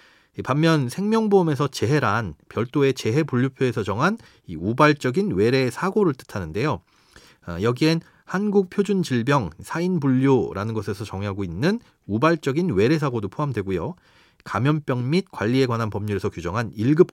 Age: 40-59